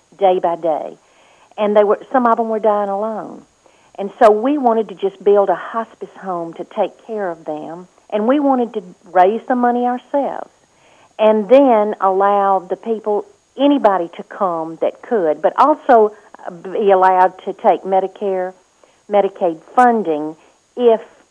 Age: 50-69